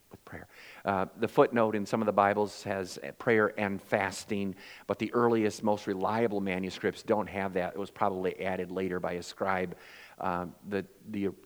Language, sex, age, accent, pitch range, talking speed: English, male, 50-69, American, 95-125 Hz, 180 wpm